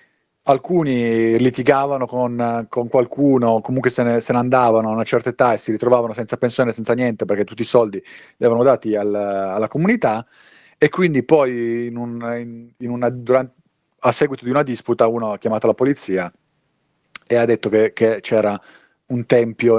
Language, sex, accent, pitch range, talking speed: Italian, male, native, 115-145 Hz, 175 wpm